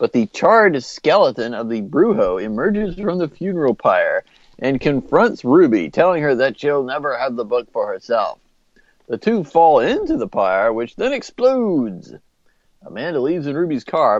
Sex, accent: male, American